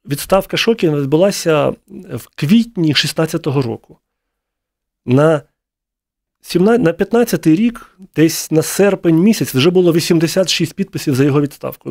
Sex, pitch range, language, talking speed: male, 145-180 Hz, Ukrainian, 105 wpm